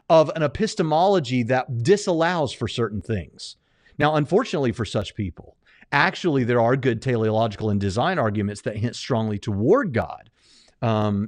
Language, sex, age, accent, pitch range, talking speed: English, male, 40-59, American, 120-170 Hz, 145 wpm